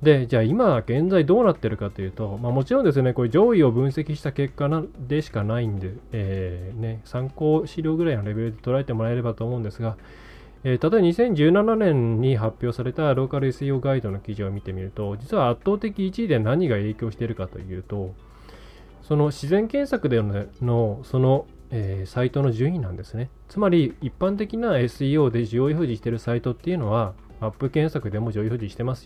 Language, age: Japanese, 20-39